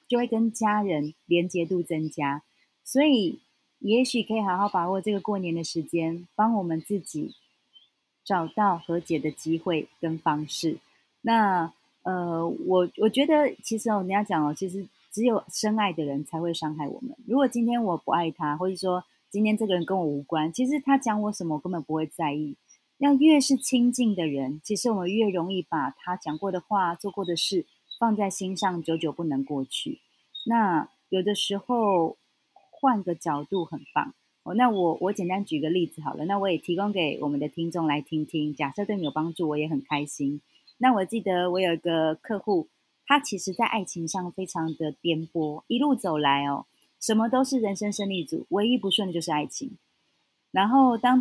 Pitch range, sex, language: 165-220 Hz, female, Chinese